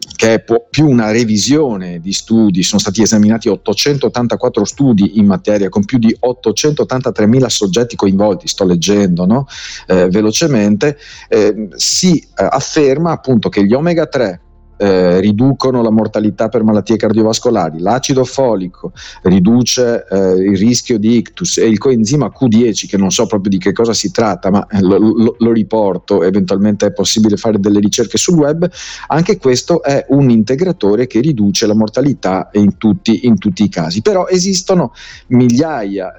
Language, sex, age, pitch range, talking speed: Italian, male, 40-59, 105-135 Hz, 155 wpm